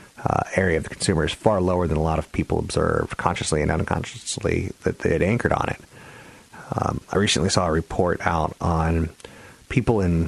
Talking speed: 195 wpm